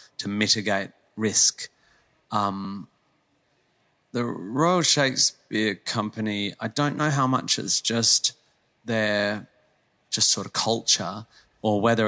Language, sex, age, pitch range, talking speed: English, male, 30-49, 95-115 Hz, 110 wpm